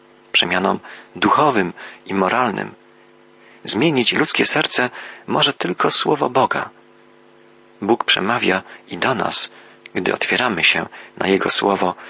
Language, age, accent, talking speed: Polish, 40-59, native, 110 wpm